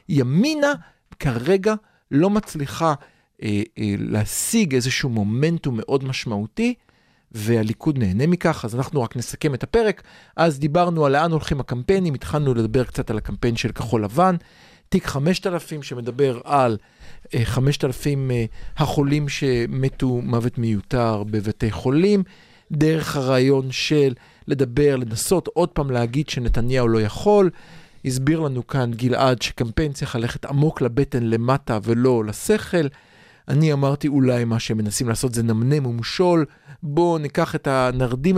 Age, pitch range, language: 40-59, 120-160 Hz, Hebrew